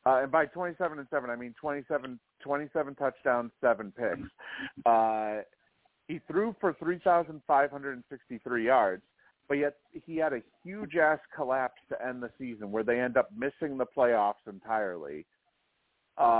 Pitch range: 120-160 Hz